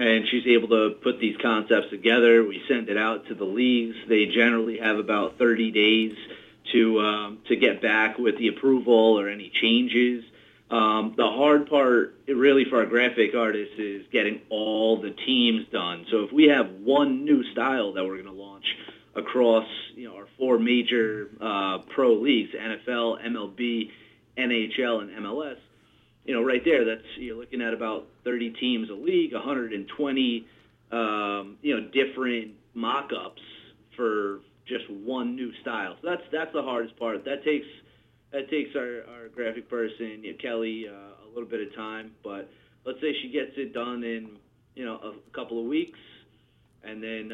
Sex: male